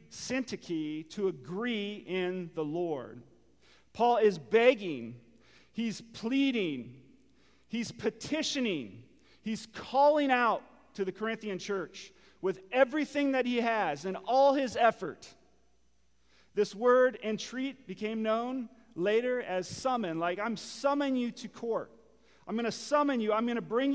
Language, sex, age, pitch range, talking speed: English, male, 40-59, 150-225 Hz, 130 wpm